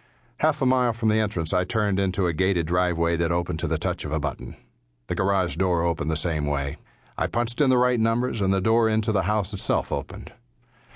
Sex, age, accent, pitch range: male, 60-79, American, 75-95 Hz